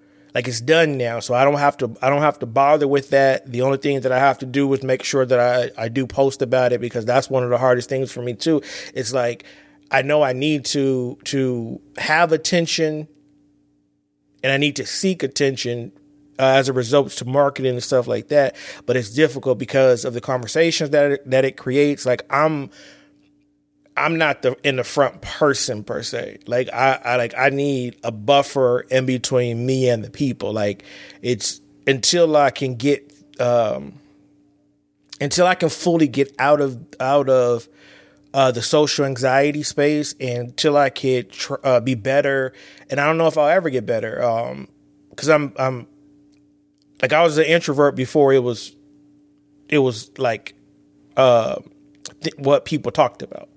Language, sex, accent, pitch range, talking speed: English, male, American, 125-145 Hz, 185 wpm